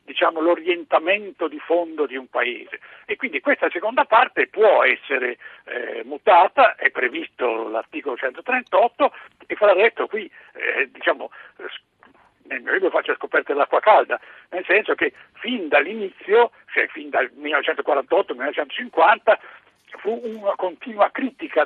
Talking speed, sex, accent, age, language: 125 wpm, male, native, 60-79, Italian